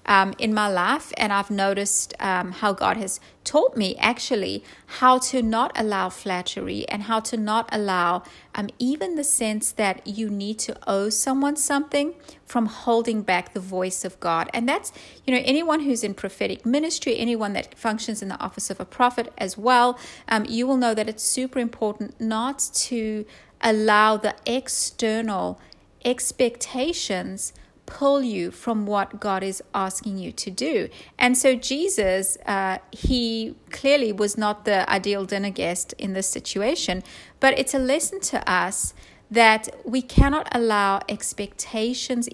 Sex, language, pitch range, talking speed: female, English, 200-245 Hz, 160 wpm